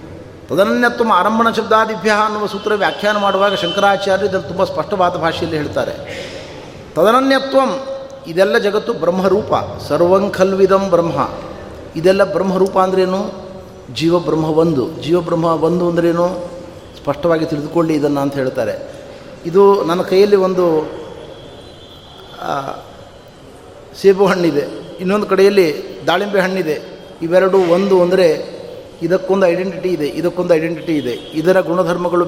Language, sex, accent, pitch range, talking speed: Kannada, male, native, 165-200 Hz, 100 wpm